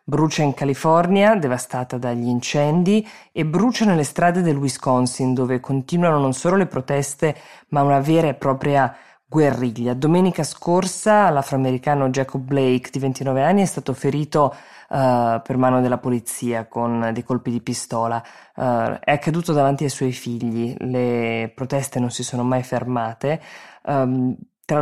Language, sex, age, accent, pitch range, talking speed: Italian, female, 20-39, native, 125-155 Hz, 140 wpm